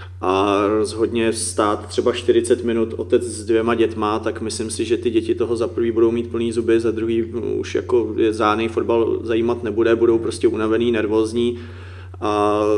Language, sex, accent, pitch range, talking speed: Czech, male, native, 105-120 Hz, 175 wpm